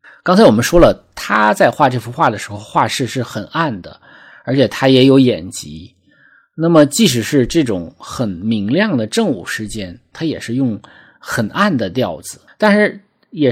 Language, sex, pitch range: Chinese, male, 110-155 Hz